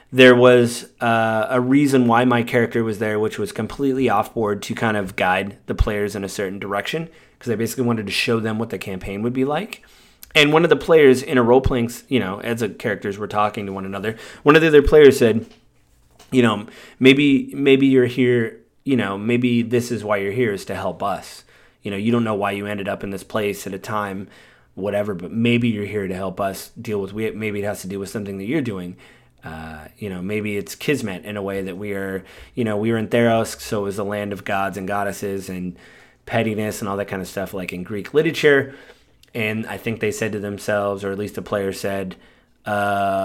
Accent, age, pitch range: American, 30-49, 100-125 Hz